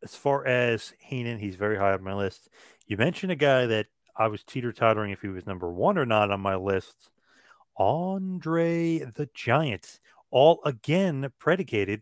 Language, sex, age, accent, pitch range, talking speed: English, male, 30-49, American, 105-130 Hz, 175 wpm